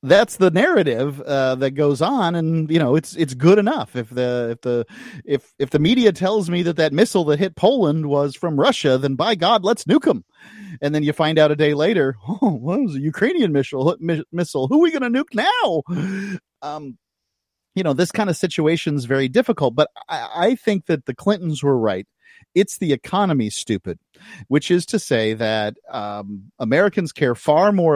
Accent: American